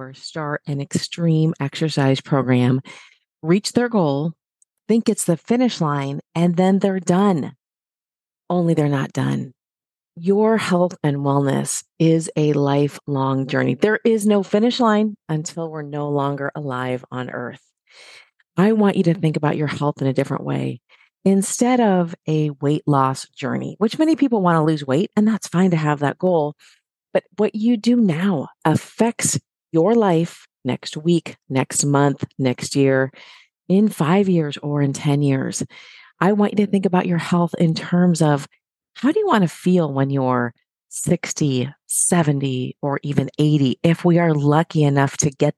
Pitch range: 140-185 Hz